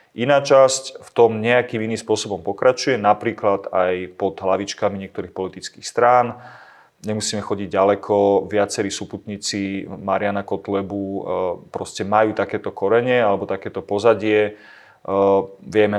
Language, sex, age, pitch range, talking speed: Slovak, male, 30-49, 95-110 Hz, 115 wpm